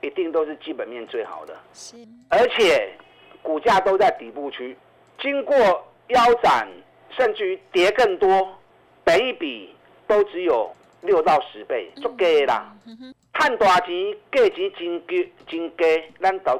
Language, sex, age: Chinese, male, 50-69